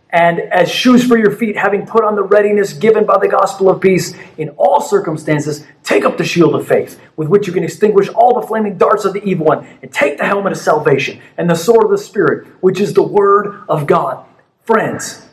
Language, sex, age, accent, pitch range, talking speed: English, male, 30-49, American, 160-205 Hz, 225 wpm